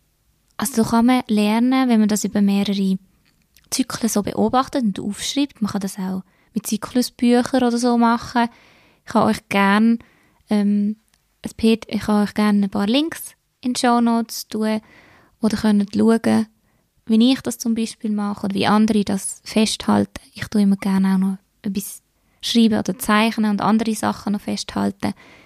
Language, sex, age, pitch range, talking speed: German, female, 20-39, 195-225 Hz, 160 wpm